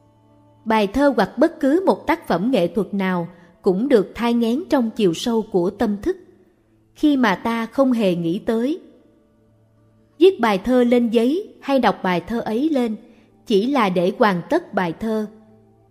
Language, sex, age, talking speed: Vietnamese, female, 20-39, 175 wpm